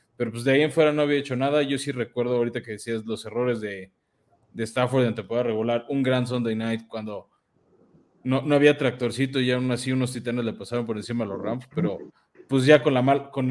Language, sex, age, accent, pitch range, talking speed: Spanish, male, 20-39, Mexican, 120-145 Hz, 230 wpm